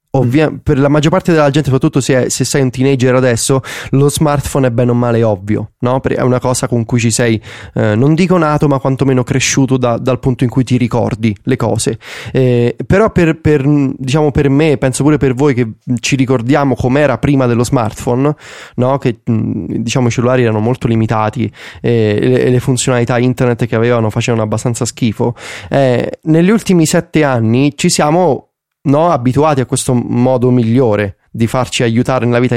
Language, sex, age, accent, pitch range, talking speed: Italian, male, 20-39, native, 115-140 Hz, 185 wpm